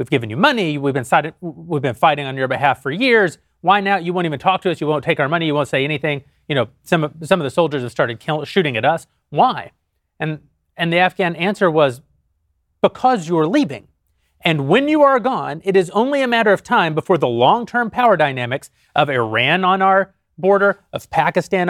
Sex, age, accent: male, 30-49, American